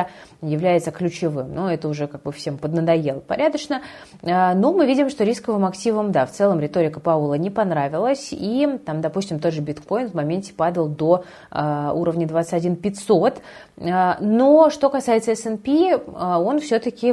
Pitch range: 170-225 Hz